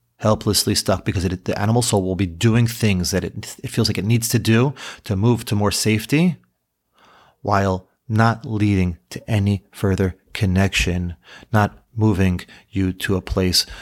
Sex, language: male, English